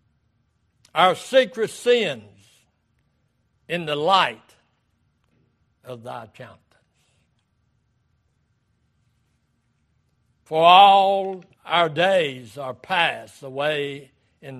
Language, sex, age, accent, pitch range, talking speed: English, male, 60-79, American, 125-160 Hz, 70 wpm